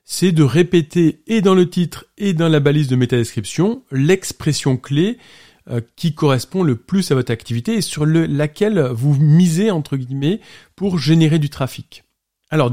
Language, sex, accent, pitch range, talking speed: French, male, French, 120-160 Hz, 160 wpm